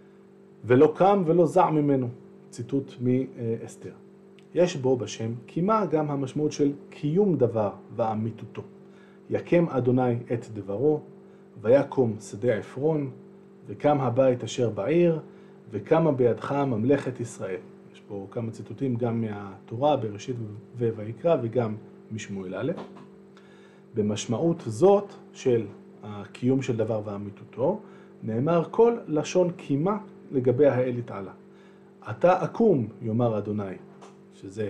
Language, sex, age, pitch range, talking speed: Hebrew, male, 40-59, 120-195 Hz, 105 wpm